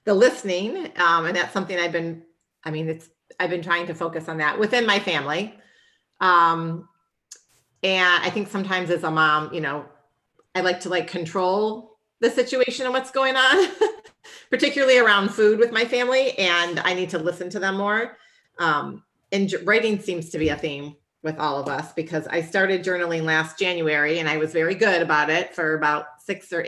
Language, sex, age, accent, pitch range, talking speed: English, female, 40-59, American, 155-200 Hz, 190 wpm